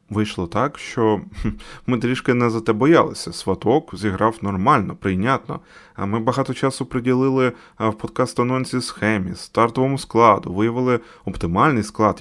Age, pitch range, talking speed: 20-39, 100-130 Hz, 125 wpm